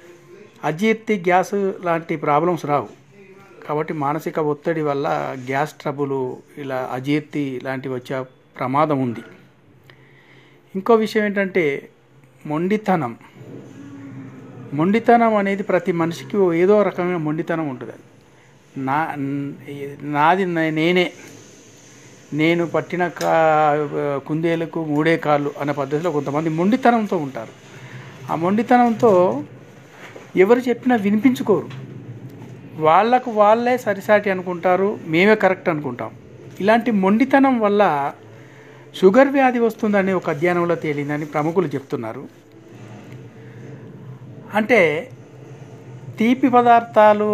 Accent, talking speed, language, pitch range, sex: native, 85 wpm, Telugu, 145-195 Hz, male